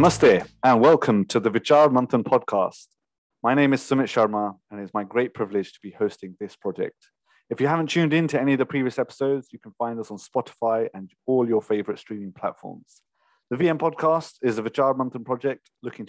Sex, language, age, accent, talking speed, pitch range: male, English, 30-49, British, 205 wpm, 105-135 Hz